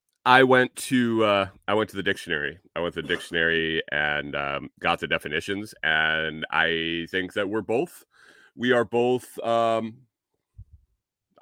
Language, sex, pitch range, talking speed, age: English, male, 85-110 Hz, 150 wpm, 30-49